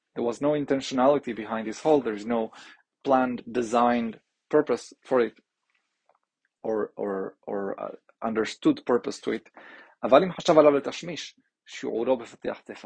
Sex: male